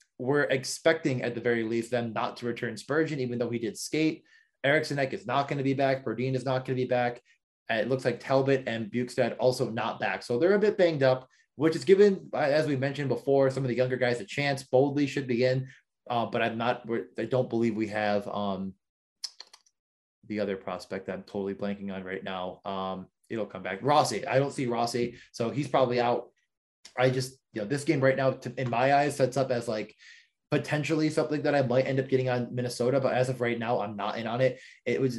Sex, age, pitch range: male, 20-39, 115-135 Hz